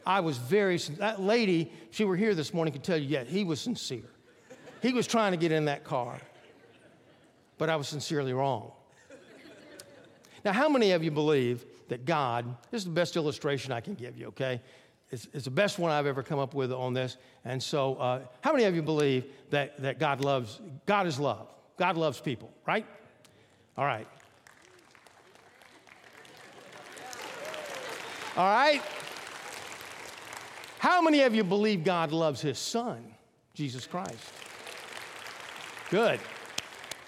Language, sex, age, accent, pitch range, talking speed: English, male, 50-69, American, 130-175 Hz, 155 wpm